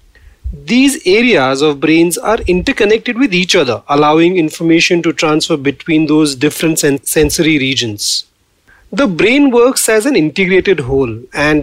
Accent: Indian